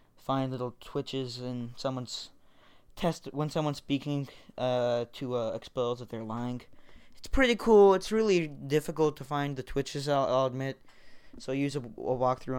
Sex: male